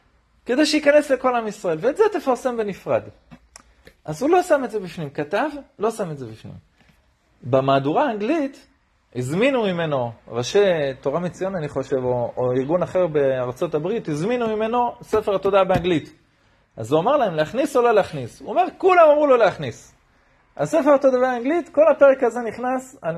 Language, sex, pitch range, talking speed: Hebrew, male, 150-245 Hz, 165 wpm